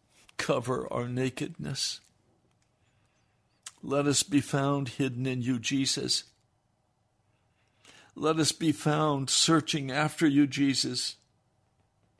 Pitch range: 105-125 Hz